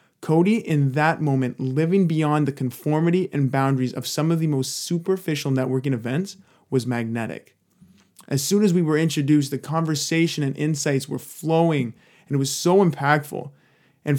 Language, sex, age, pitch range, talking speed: English, male, 20-39, 135-165 Hz, 160 wpm